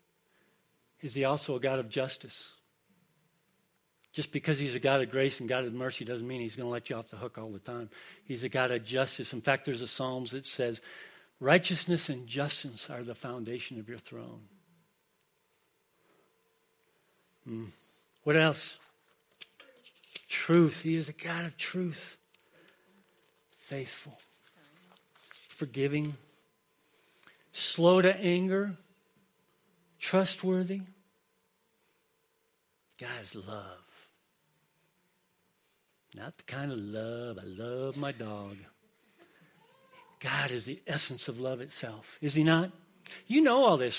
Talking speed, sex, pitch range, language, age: 125 wpm, male, 125-180 Hz, English, 60-79